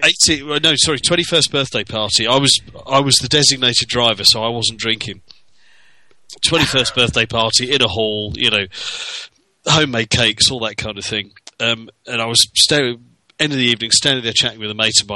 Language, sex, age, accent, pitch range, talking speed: English, male, 30-49, British, 105-130 Hz, 180 wpm